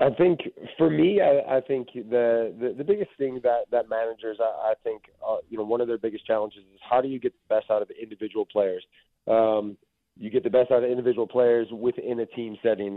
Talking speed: 225 wpm